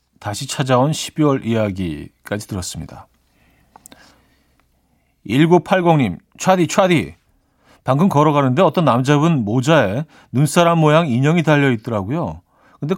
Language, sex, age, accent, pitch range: Korean, male, 40-59, native, 115-165 Hz